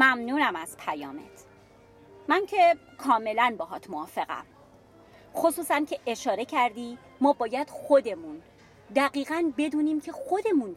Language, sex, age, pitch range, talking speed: English, female, 30-49, 235-325 Hz, 110 wpm